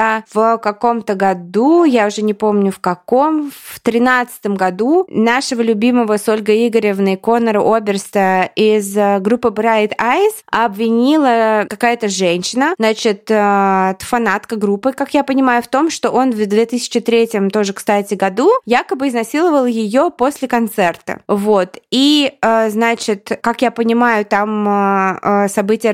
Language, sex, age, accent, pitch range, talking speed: Russian, female, 20-39, native, 205-245 Hz, 125 wpm